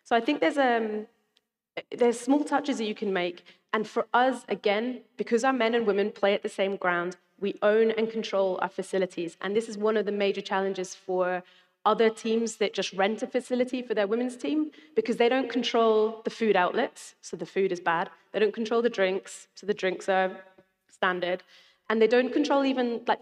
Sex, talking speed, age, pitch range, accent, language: female, 205 wpm, 30-49, 195-230 Hz, British, English